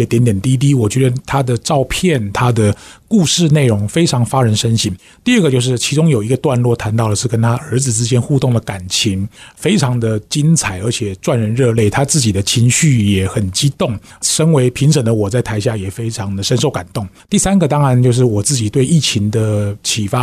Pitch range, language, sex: 110-140 Hz, Chinese, male